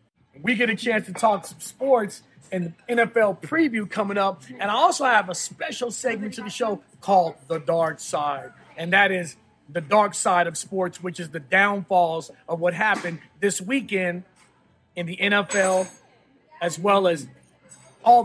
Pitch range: 165-205 Hz